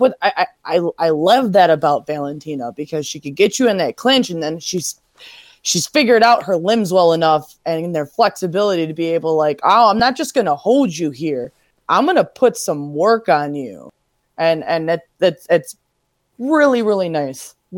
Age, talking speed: 20-39, 185 wpm